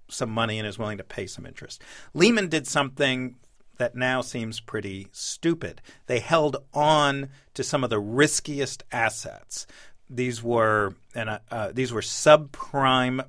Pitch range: 115-145 Hz